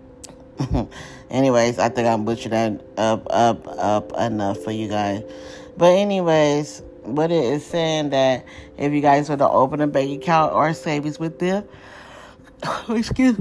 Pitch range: 120-150 Hz